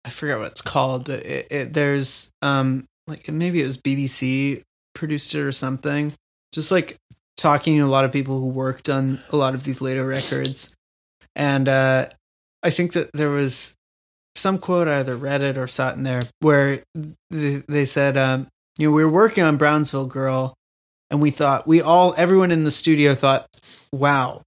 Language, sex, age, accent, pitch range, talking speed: English, male, 30-49, American, 135-155 Hz, 185 wpm